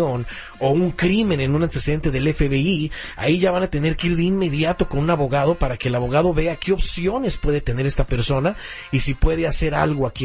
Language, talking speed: Spanish, 215 wpm